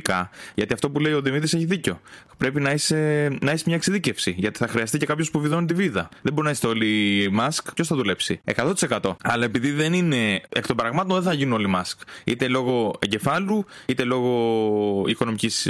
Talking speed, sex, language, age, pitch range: 200 wpm, male, Greek, 20-39, 110-155 Hz